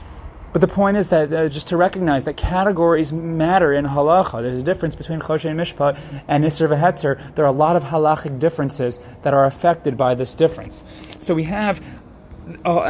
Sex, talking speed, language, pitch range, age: male, 190 wpm, English, 140-170 Hz, 30-49